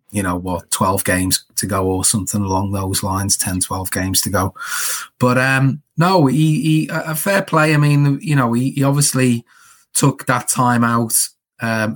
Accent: British